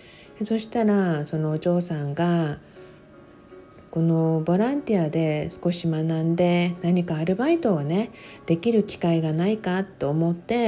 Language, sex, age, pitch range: Japanese, female, 50-69, 165-200 Hz